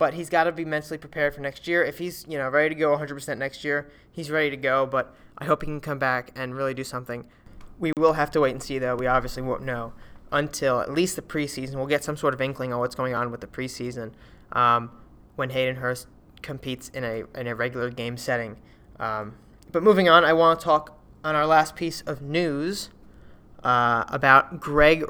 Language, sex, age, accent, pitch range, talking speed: English, male, 20-39, American, 125-155 Hz, 225 wpm